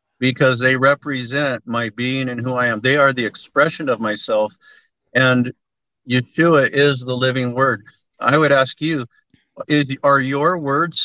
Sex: male